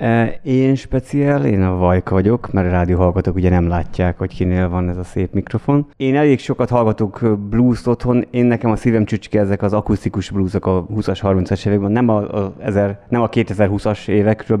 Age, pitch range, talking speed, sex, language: 30-49, 95-120 Hz, 185 wpm, male, Hungarian